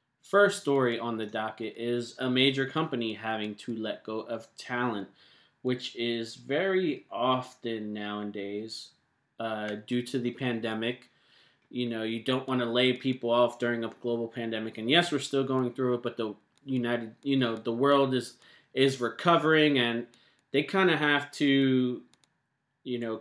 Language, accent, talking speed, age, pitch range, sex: English, American, 165 wpm, 20-39, 115-135 Hz, male